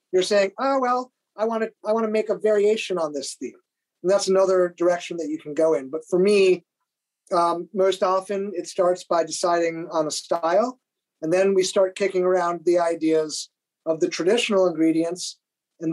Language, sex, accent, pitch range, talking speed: English, male, American, 170-200 Hz, 190 wpm